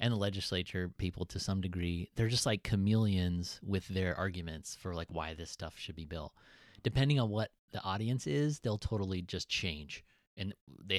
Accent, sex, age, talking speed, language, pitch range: American, male, 30-49, 185 wpm, English, 90-125 Hz